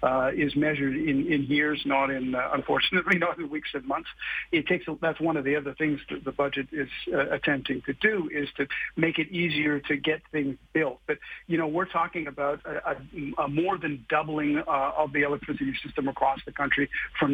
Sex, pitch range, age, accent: male, 145-165 Hz, 50-69, American